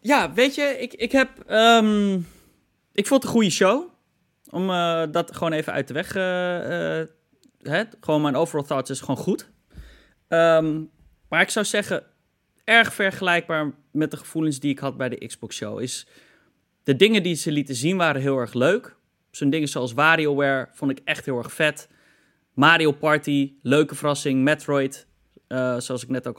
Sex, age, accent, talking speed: male, 20-39, Dutch, 175 wpm